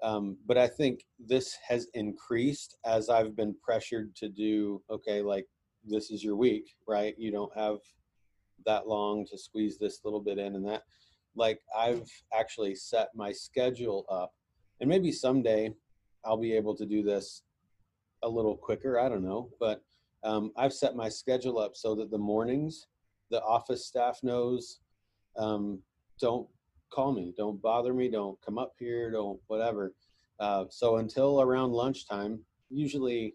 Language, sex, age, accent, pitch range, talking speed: English, male, 30-49, American, 100-115 Hz, 160 wpm